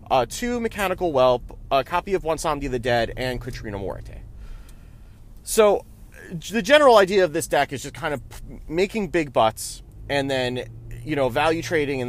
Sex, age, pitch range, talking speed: male, 30-49, 115-155 Hz, 170 wpm